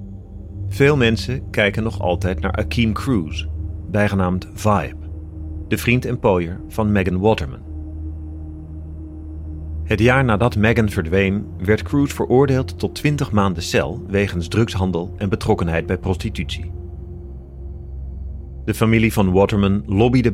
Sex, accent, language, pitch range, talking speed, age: male, Dutch, Dutch, 85-110 Hz, 120 wpm, 40-59